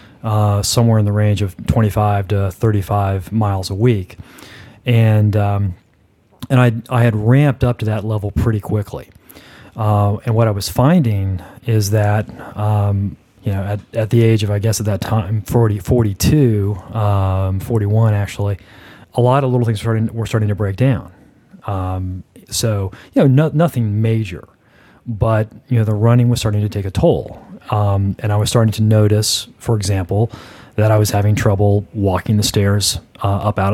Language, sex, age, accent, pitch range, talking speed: English, male, 30-49, American, 100-115 Hz, 180 wpm